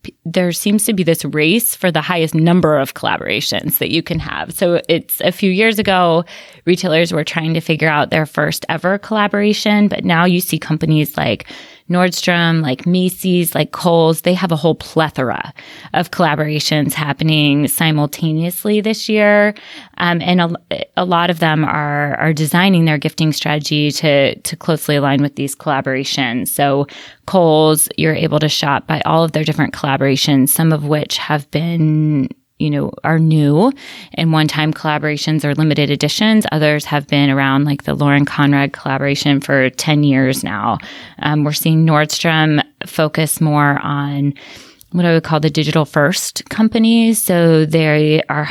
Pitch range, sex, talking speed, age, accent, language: 145-170 Hz, female, 160 wpm, 20-39, American, English